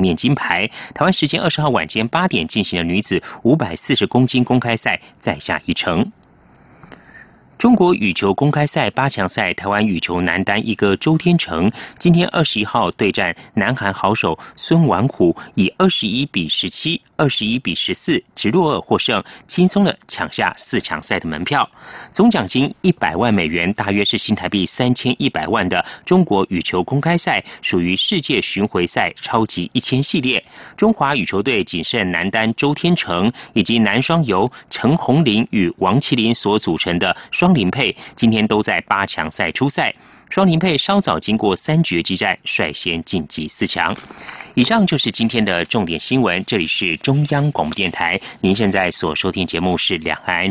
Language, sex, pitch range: Chinese, male, 95-155 Hz